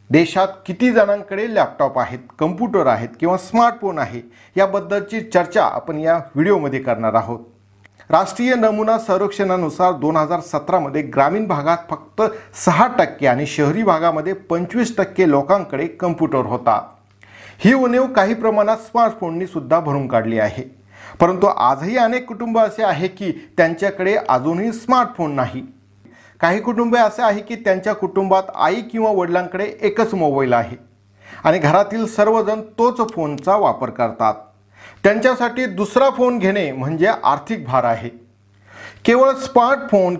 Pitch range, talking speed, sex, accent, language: 135-215 Hz, 135 wpm, male, native, Marathi